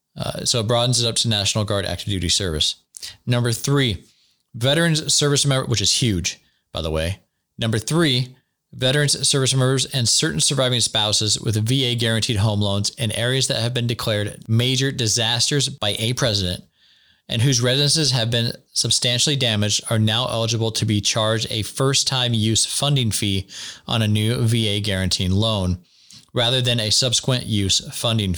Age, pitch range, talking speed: 20-39, 100-130 Hz, 165 wpm